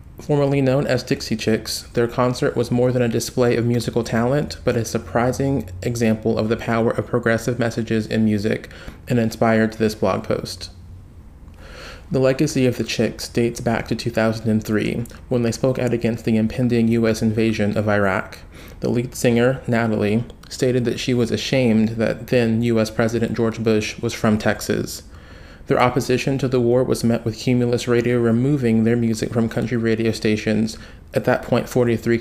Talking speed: 170 wpm